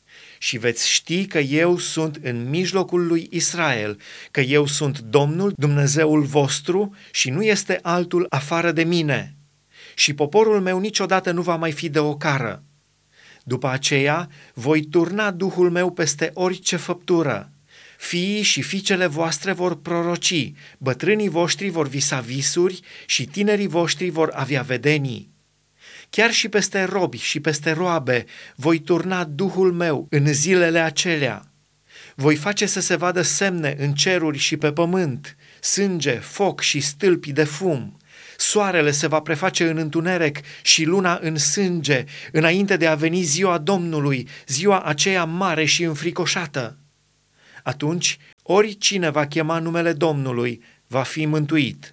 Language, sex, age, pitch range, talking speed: Romanian, male, 30-49, 145-180 Hz, 140 wpm